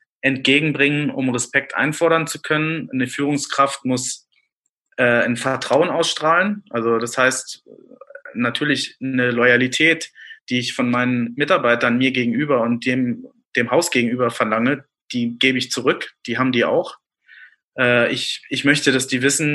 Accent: German